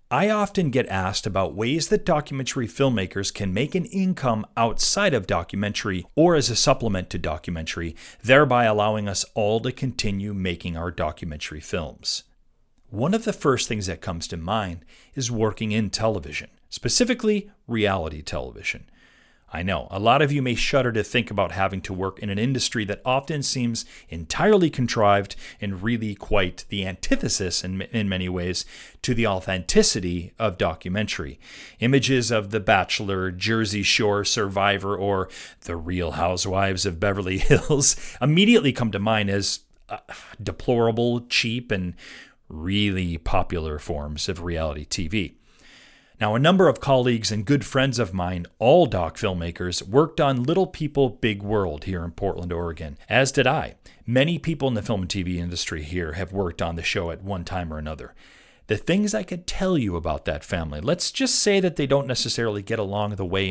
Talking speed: 170 wpm